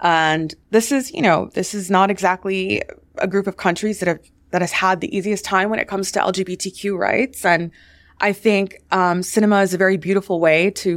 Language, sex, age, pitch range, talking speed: English, female, 20-39, 150-195 Hz, 210 wpm